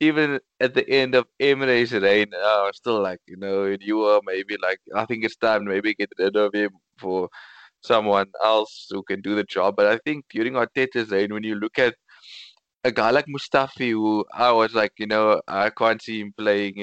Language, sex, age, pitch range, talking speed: English, male, 20-39, 105-130 Hz, 215 wpm